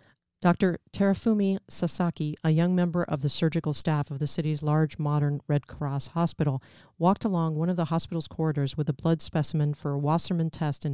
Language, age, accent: English, 40-59, American